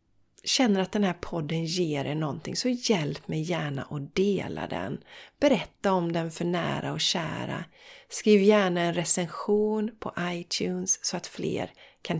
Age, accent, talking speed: 40-59, native, 155 wpm